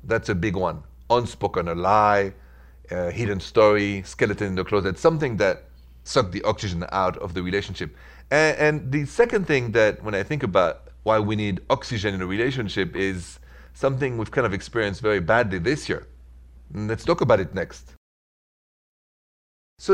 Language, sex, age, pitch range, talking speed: English, male, 40-59, 85-125 Hz, 170 wpm